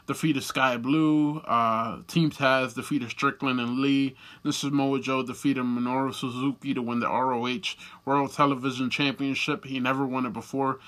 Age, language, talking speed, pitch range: 20-39, English, 165 wpm, 120-150 Hz